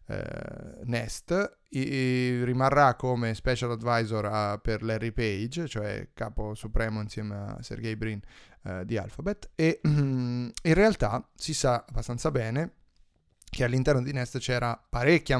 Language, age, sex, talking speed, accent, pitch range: Italian, 20-39, male, 115 wpm, native, 115-135 Hz